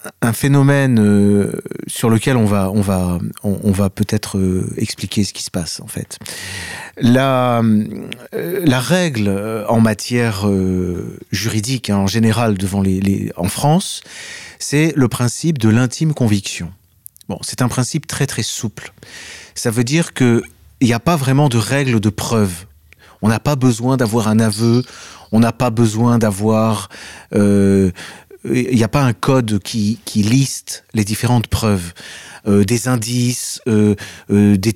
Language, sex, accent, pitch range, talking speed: French, male, French, 105-130 Hz, 150 wpm